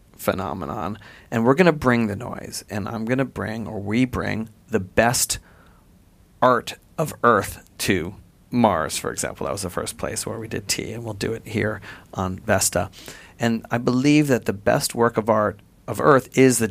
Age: 40-59